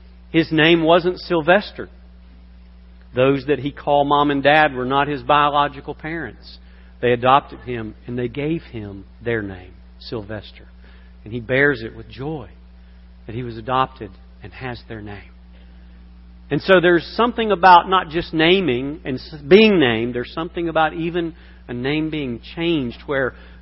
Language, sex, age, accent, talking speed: English, male, 50-69, American, 150 wpm